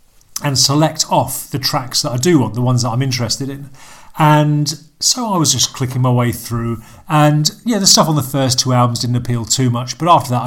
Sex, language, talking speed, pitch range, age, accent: male, English, 230 wpm, 120-145 Hz, 40-59, British